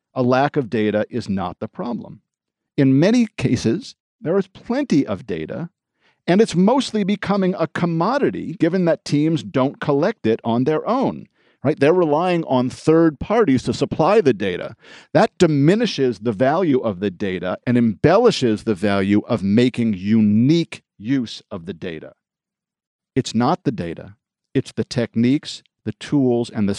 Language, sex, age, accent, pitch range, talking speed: English, male, 50-69, American, 110-165 Hz, 155 wpm